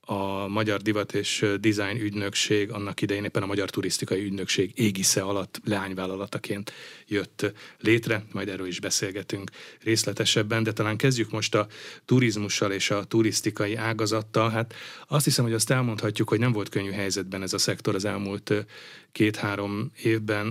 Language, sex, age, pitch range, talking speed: Hungarian, male, 30-49, 100-115 Hz, 150 wpm